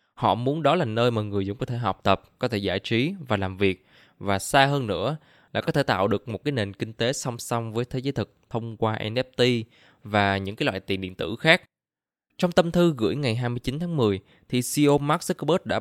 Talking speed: 240 wpm